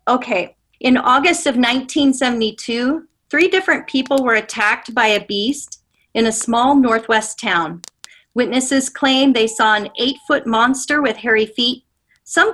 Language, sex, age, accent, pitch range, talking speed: English, female, 40-59, American, 215-275 Hz, 140 wpm